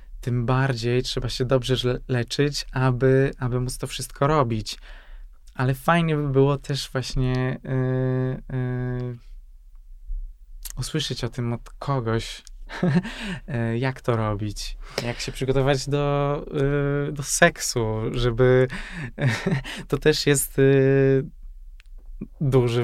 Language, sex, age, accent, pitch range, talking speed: Polish, male, 20-39, native, 120-140 Hz, 95 wpm